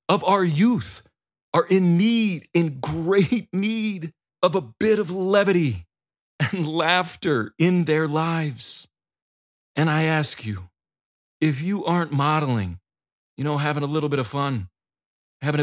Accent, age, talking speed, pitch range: American, 40-59, 140 wpm, 135-190 Hz